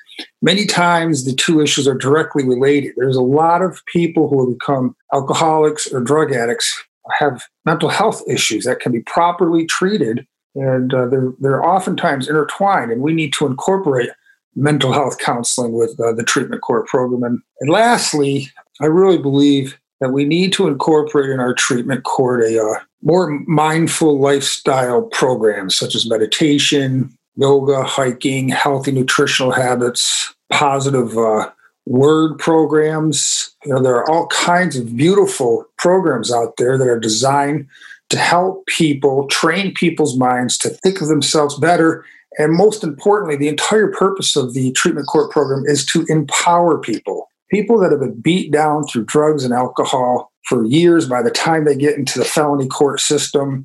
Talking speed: 160 wpm